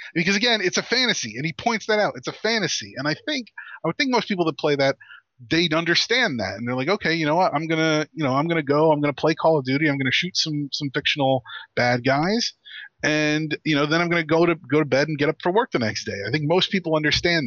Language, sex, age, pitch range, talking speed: English, male, 30-49, 140-185 Hz, 290 wpm